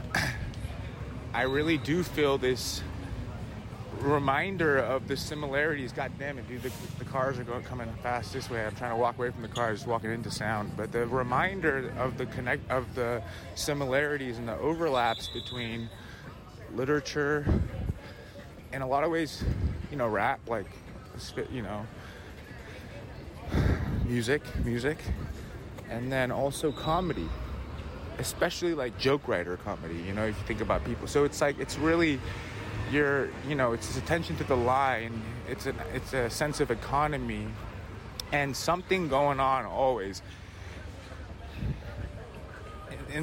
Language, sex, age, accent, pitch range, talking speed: English, male, 30-49, American, 105-135 Hz, 140 wpm